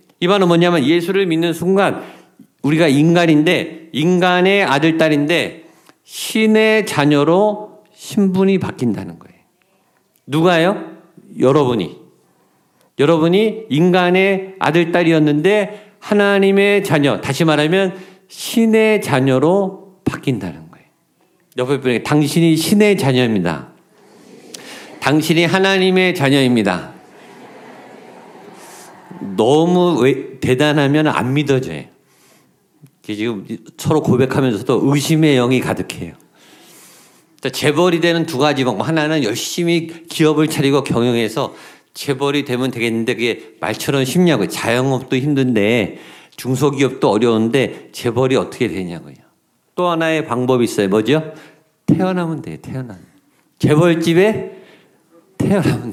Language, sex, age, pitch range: Korean, male, 50-69, 135-180 Hz